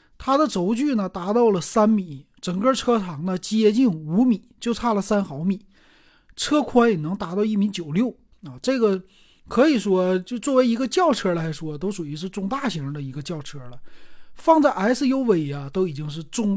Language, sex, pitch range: Chinese, male, 165-235 Hz